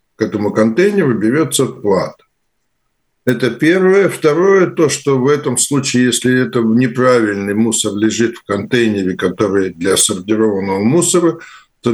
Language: Russian